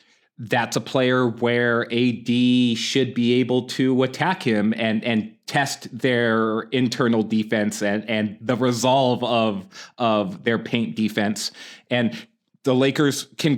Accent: American